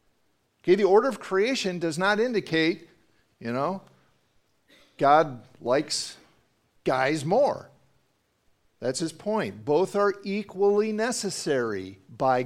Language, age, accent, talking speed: English, 50-69, American, 100 wpm